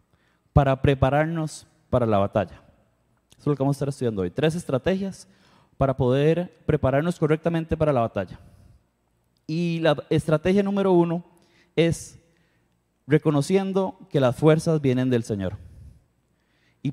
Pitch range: 130-170 Hz